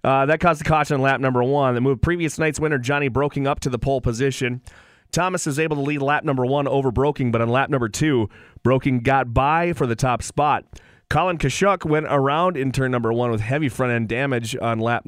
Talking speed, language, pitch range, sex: 225 wpm, English, 115-145 Hz, male